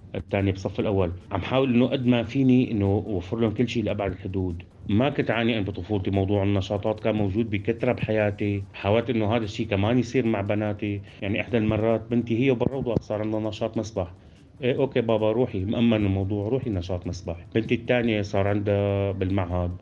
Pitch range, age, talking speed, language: 100-120 Hz, 30-49, 180 wpm, Arabic